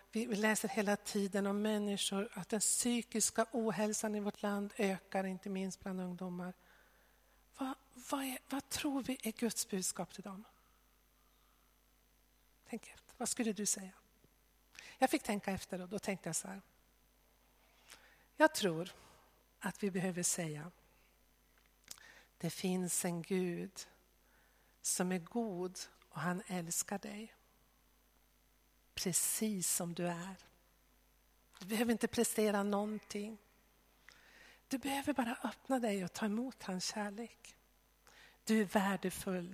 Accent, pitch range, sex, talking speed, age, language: native, 175-220 Hz, female, 125 wpm, 50-69, Swedish